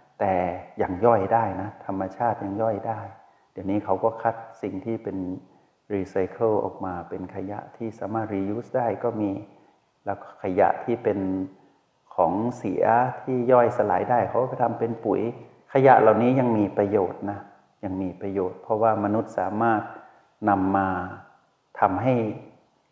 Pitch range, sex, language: 95-115 Hz, male, Thai